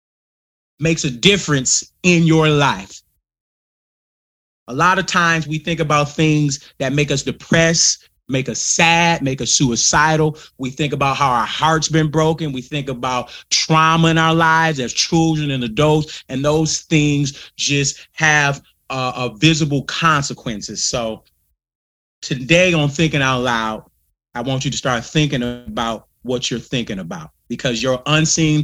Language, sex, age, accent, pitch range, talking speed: English, male, 30-49, American, 130-160 Hz, 155 wpm